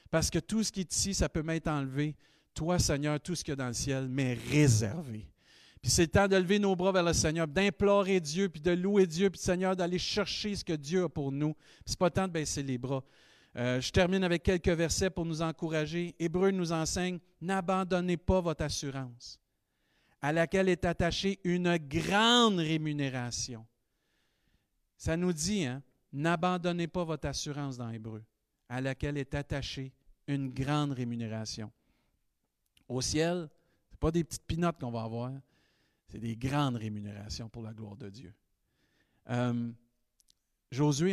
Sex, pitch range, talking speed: male, 125-175 Hz, 175 wpm